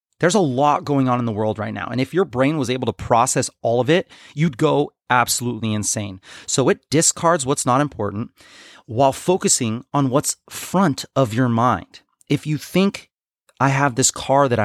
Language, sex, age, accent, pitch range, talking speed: English, male, 30-49, American, 115-160 Hz, 195 wpm